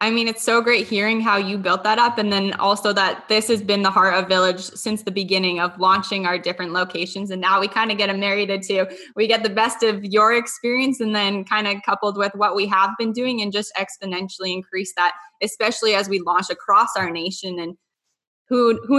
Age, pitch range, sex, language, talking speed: 10-29, 190-225 Hz, female, English, 230 wpm